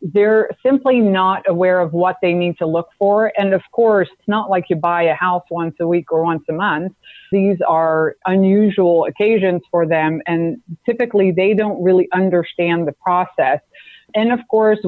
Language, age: English, 30-49